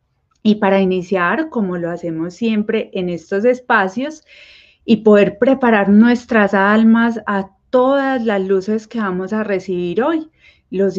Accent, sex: Colombian, female